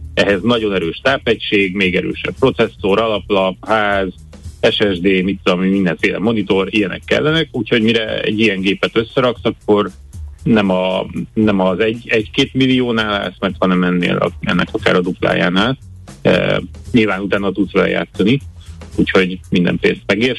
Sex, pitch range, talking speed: male, 90-115 Hz, 140 wpm